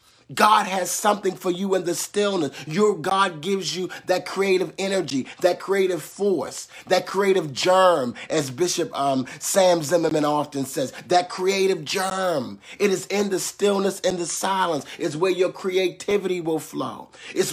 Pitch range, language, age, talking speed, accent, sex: 150-195 Hz, English, 30-49, 160 wpm, American, male